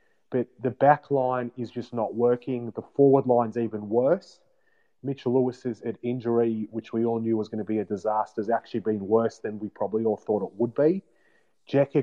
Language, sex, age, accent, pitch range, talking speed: English, male, 30-49, Australian, 115-135 Hz, 195 wpm